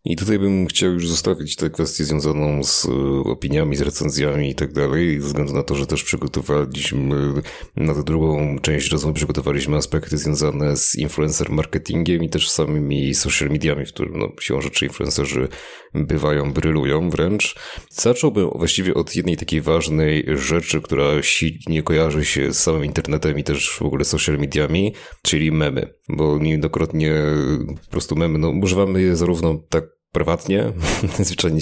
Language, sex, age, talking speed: Polish, male, 30-49, 155 wpm